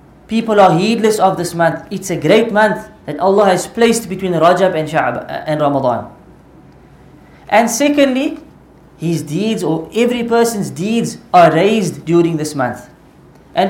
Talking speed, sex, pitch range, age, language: 150 wpm, female, 170-225 Hz, 20-39, English